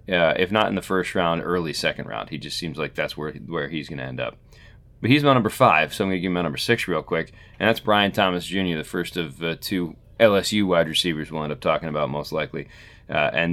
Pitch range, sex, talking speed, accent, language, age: 90-110 Hz, male, 265 wpm, American, English, 30-49